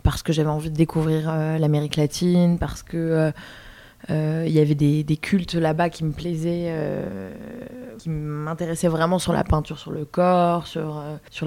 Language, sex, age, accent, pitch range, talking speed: French, female, 20-39, French, 155-175 Hz, 185 wpm